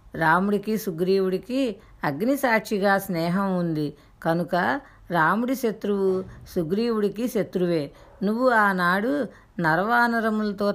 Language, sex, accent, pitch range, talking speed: Telugu, female, native, 170-215 Hz, 75 wpm